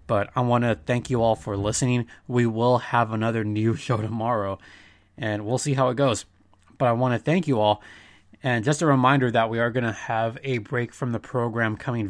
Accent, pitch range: American, 105-135 Hz